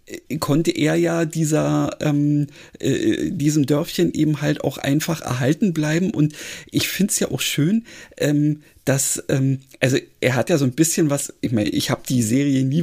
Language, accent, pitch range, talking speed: German, German, 140-165 Hz, 180 wpm